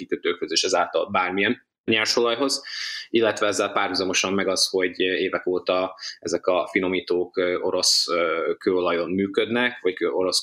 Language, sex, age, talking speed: Hungarian, male, 20-39, 115 wpm